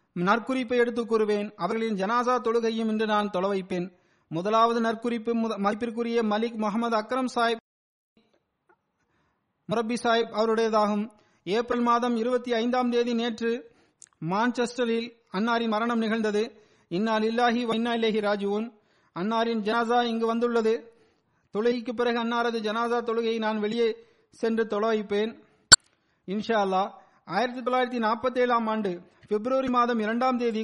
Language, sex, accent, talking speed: Tamil, male, native, 110 wpm